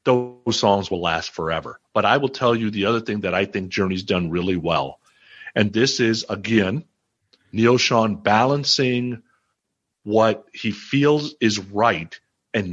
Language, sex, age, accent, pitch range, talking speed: English, male, 50-69, American, 105-135 Hz, 155 wpm